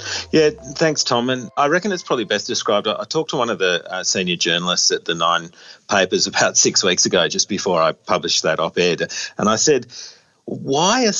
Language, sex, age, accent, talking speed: English, male, 40-59, Australian, 205 wpm